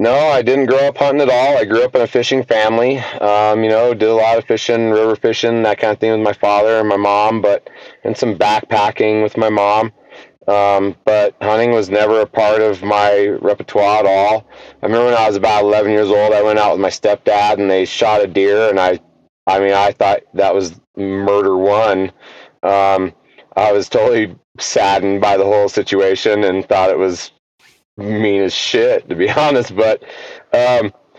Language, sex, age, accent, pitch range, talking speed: English, male, 30-49, American, 100-110 Hz, 200 wpm